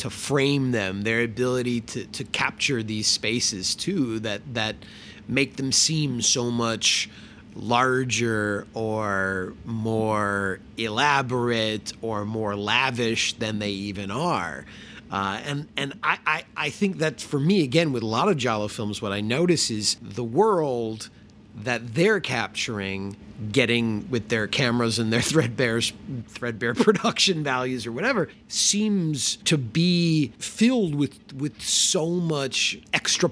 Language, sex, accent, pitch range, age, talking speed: English, male, American, 110-160 Hz, 30-49, 135 wpm